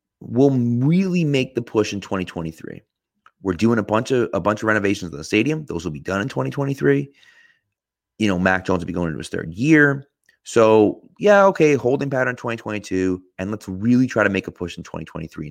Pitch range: 90-120 Hz